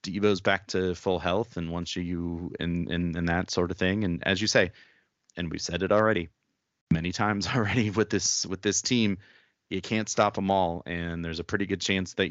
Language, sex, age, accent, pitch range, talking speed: English, male, 30-49, American, 85-100 Hz, 215 wpm